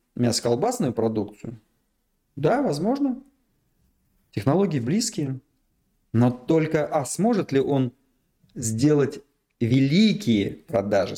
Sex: male